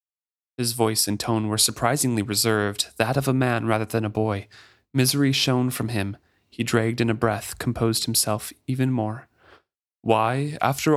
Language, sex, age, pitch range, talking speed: English, male, 30-49, 105-140 Hz, 165 wpm